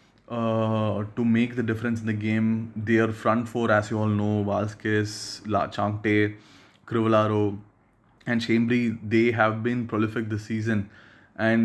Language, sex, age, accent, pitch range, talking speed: English, male, 20-39, Indian, 105-115 Hz, 145 wpm